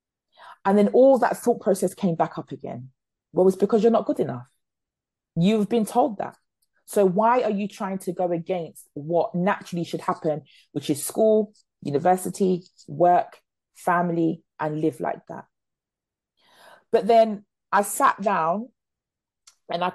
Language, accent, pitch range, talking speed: English, British, 150-200 Hz, 155 wpm